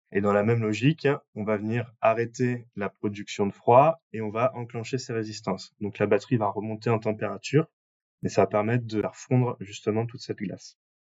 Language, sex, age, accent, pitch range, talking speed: French, male, 20-39, French, 105-125 Hz, 200 wpm